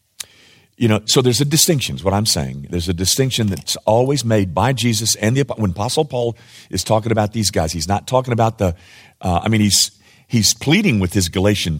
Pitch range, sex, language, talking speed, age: 90-115 Hz, male, English, 215 wpm, 50-69